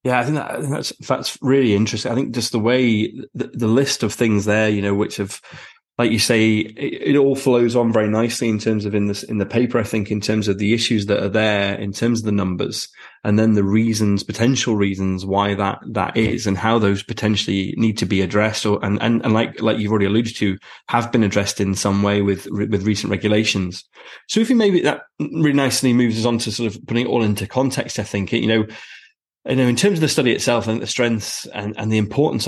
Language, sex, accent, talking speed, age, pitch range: English, male, British, 240 wpm, 20-39, 100-115 Hz